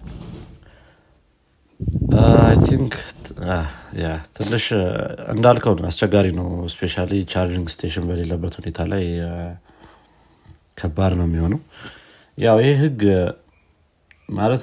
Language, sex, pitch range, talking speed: Amharic, male, 85-100 Hz, 90 wpm